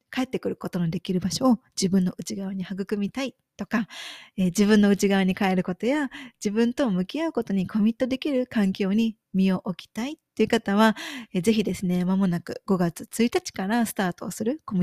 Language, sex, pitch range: Japanese, female, 185-235 Hz